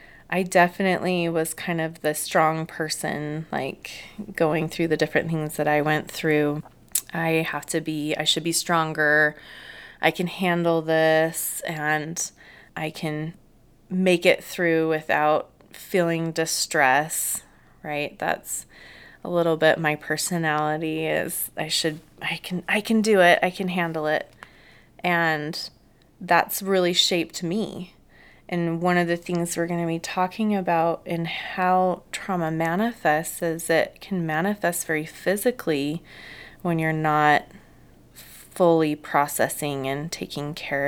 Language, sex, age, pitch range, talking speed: English, female, 20-39, 150-175 Hz, 135 wpm